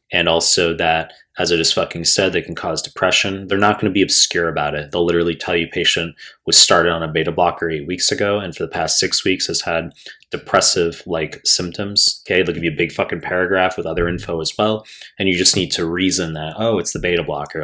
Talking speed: 240 wpm